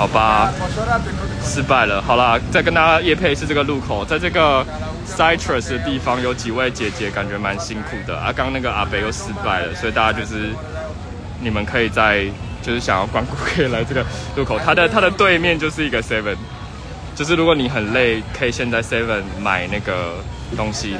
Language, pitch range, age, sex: Chinese, 100-125 Hz, 20-39, male